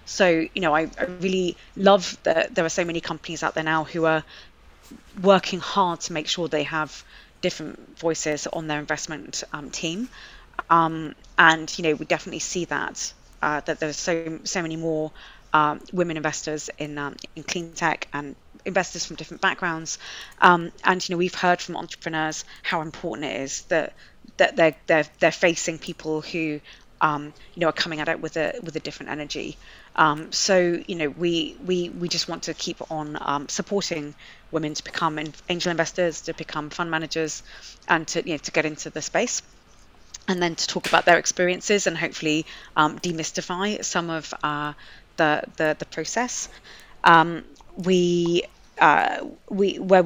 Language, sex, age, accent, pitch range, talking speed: English, female, 20-39, British, 155-180 Hz, 175 wpm